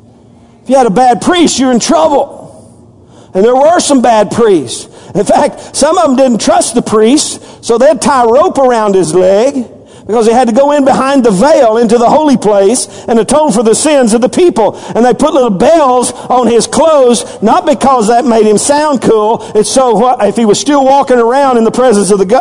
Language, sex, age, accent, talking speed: English, male, 50-69, American, 215 wpm